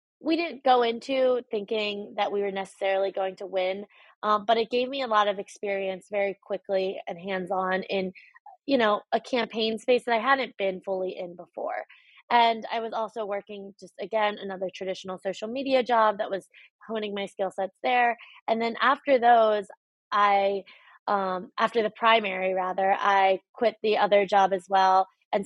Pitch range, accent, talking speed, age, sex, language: 195-225 Hz, American, 175 wpm, 20-39, female, English